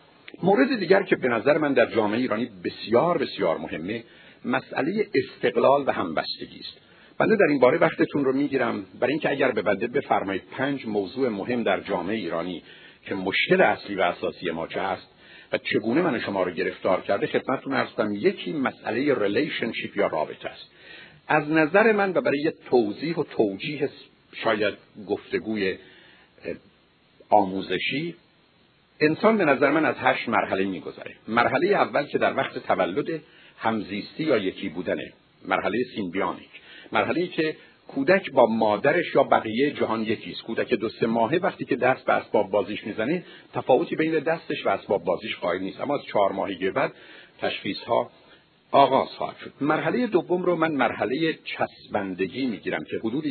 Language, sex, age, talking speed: Persian, male, 60-79, 155 wpm